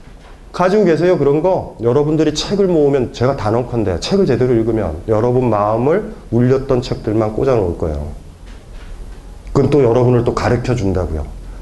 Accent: native